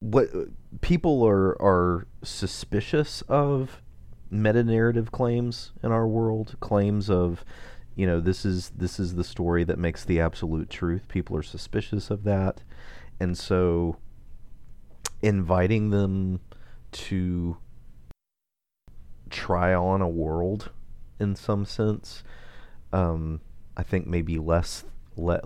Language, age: English, 40-59